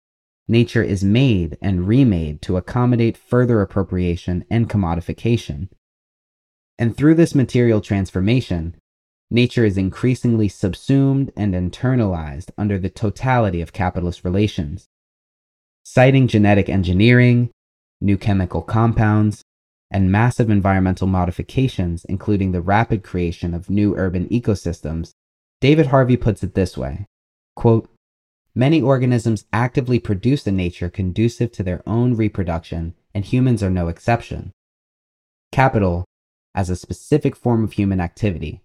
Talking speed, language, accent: 120 wpm, English, American